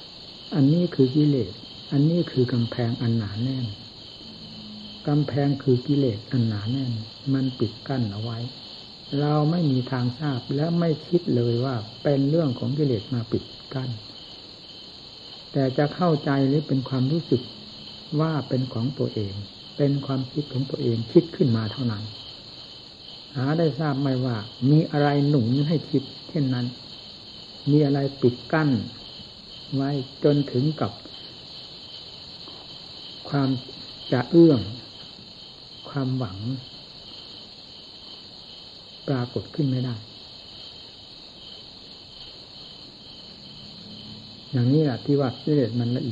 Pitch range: 120-145 Hz